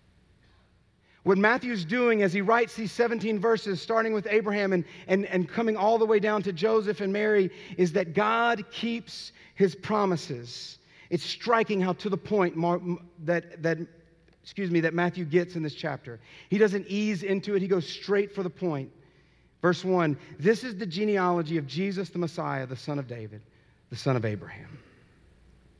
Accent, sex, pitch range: American, male, 140-185 Hz